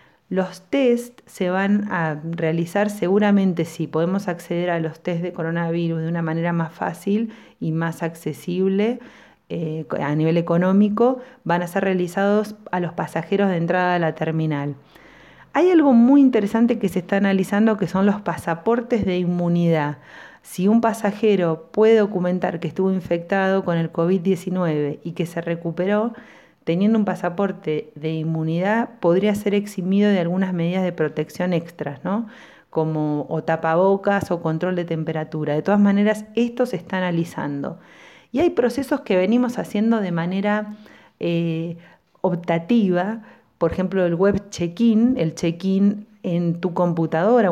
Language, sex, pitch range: Spanish, female, 165-205 Hz